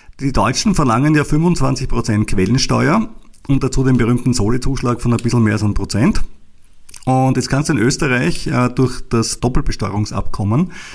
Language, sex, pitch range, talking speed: German, male, 115-140 Hz, 150 wpm